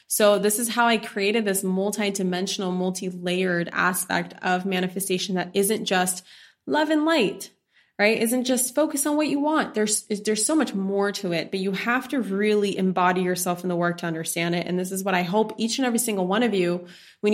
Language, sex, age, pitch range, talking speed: English, female, 20-39, 185-220 Hz, 210 wpm